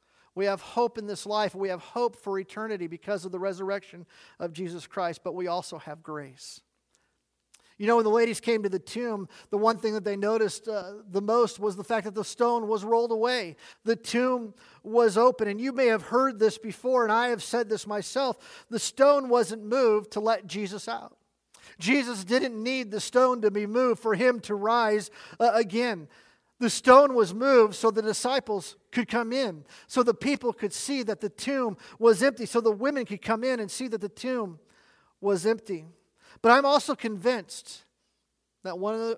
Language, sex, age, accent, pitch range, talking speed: English, male, 40-59, American, 195-235 Hz, 195 wpm